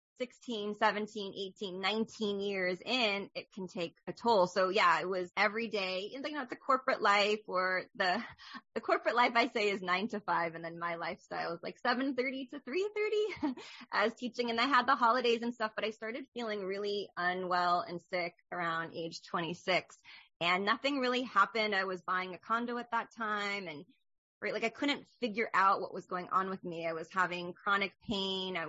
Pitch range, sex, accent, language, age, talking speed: 175-225 Hz, female, American, English, 20-39, 195 wpm